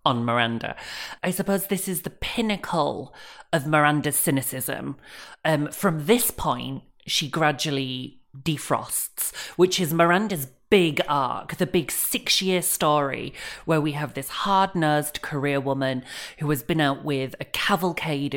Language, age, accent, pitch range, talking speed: English, 30-49, British, 140-175 Hz, 135 wpm